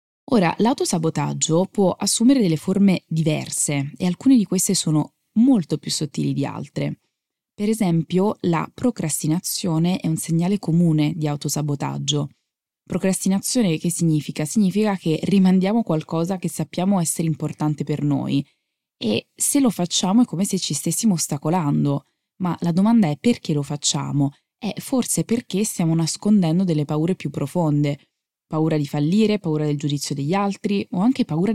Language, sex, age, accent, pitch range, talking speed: Italian, female, 20-39, native, 155-195 Hz, 145 wpm